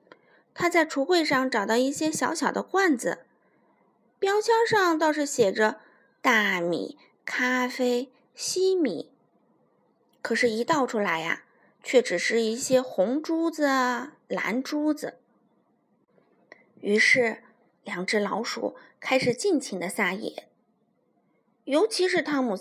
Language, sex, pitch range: Chinese, female, 220-325 Hz